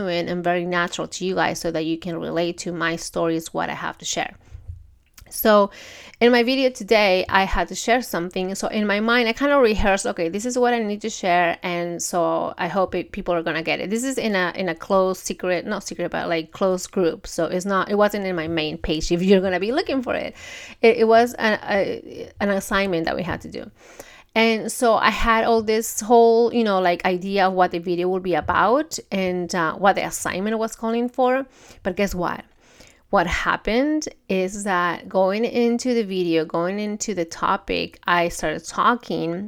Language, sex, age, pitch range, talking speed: English, female, 30-49, 175-225 Hz, 215 wpm